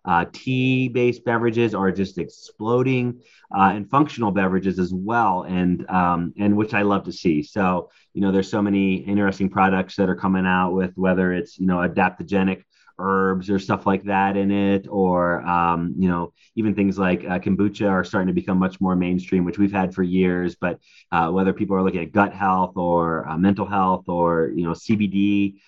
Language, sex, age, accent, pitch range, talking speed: English, male, 30-49, American, 95-115 Hz, 195 wpm